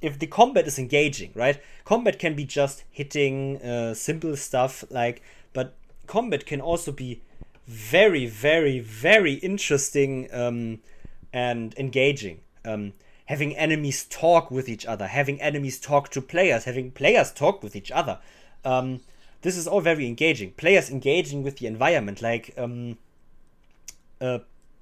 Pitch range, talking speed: 125-155 Hz, 145 wpm